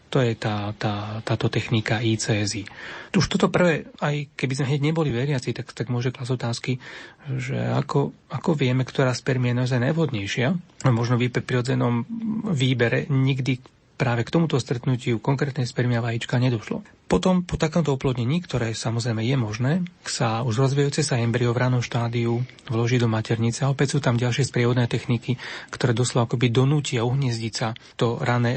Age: 30-49